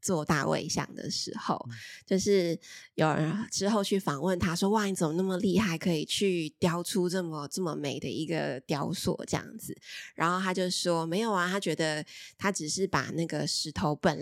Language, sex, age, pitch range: Chinese, female, 20-39, 165-200 Hz